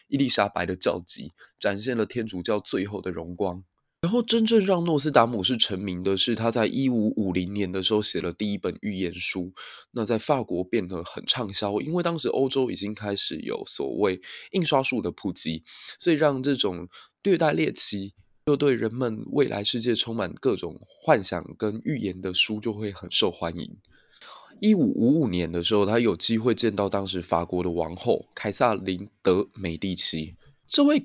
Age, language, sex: 20-39, Chinese, male